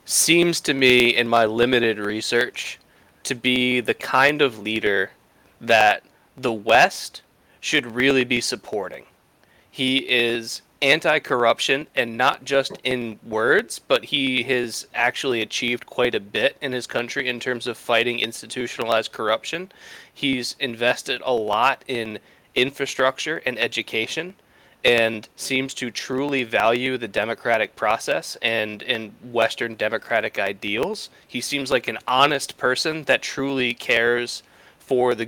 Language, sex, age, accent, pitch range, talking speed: English, male, 20-39, American, 115-130 Hz, 130 wpm